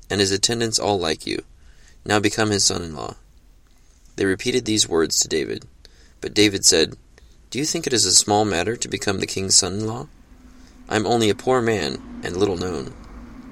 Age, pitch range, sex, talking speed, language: 20-39, 90-110 Hz, male, 180 wpm, English